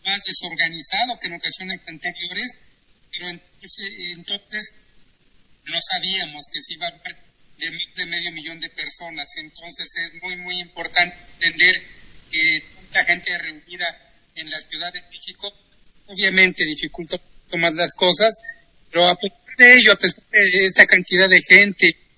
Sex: male